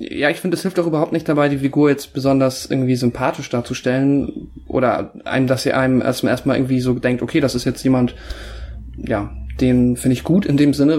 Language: German